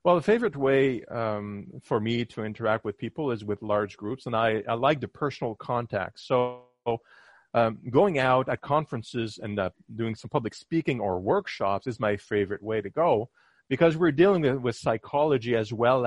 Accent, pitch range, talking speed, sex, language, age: American, 105-135 Hz, 185 wpm, male, English, 40-59